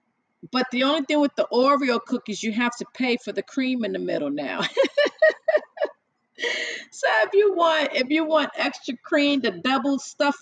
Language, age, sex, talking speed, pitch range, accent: English, 40-59, female, 180 wpm, 210-290 Hz, American